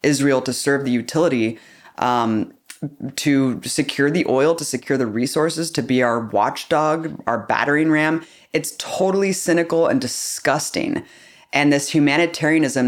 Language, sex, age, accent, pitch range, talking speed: English, female, 20-39, American, 120-150 Hz, 135 wpm